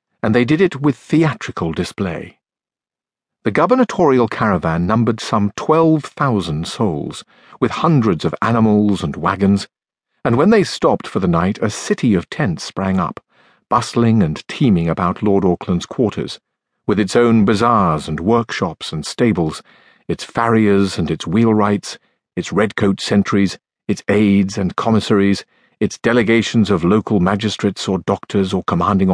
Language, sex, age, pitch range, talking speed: English, male, 50-69, 95-115 Hz, 145 wpm